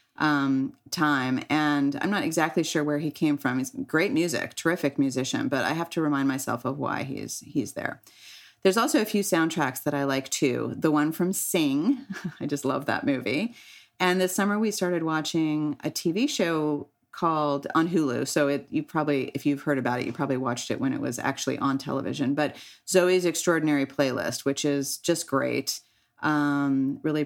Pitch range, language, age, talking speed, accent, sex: 140-170 Hz, English, 30-49, 190 wpm, American, female